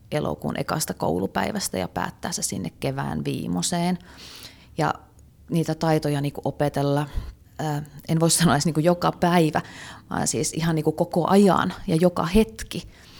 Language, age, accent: Finnish, 30-49, native